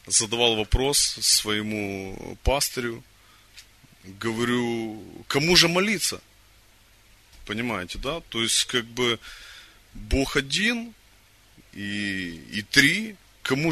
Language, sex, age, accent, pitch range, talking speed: Russian, male, 30-49, native, 105-140 Hz, 90 wpm